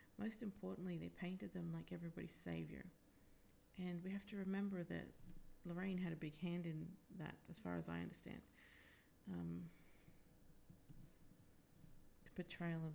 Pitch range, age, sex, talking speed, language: 155-180 Hz, 30-49, female, 140 wpm, English